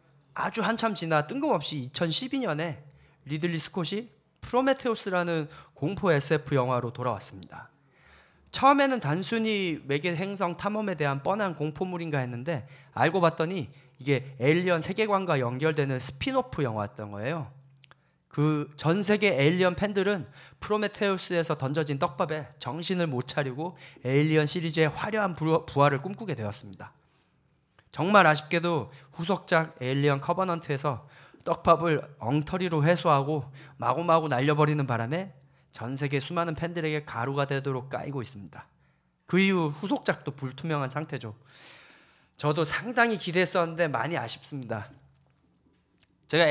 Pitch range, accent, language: 135-180 Hz, native, Korean